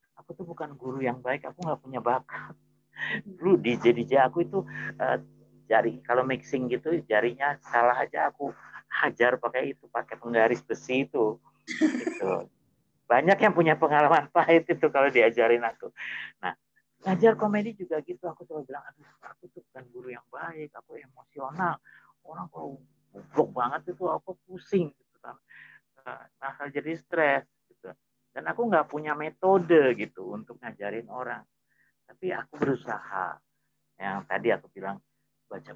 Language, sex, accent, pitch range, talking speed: Indonesian, male, native, 115-165 Hz, 140 wpm